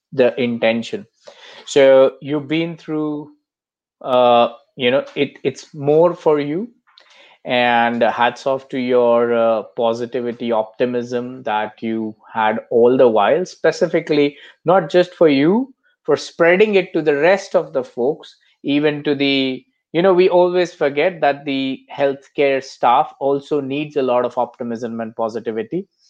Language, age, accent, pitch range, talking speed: English, 20-39, Indian, 115-150 Hz, 145 wpm